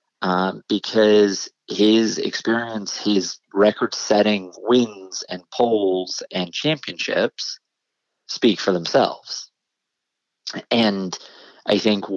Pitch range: 95-110 Hz